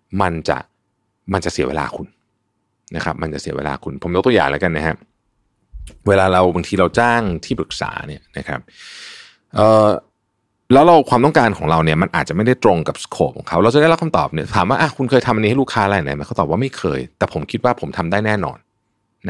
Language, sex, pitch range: Thai, male, 85-125 Hz